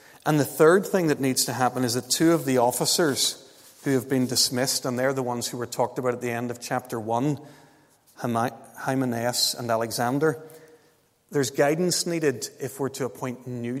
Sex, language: male, English